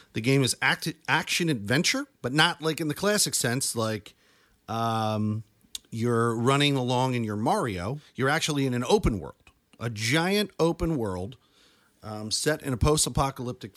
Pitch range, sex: 115-155 Hz, male